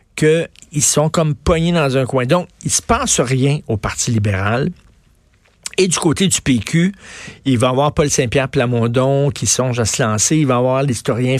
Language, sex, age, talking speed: French, male, 50-69, 205 wpm